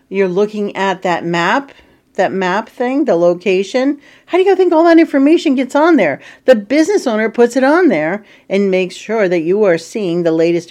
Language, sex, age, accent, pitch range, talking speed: English, female, 50-69, American, 175-250 Hz, 200 wpm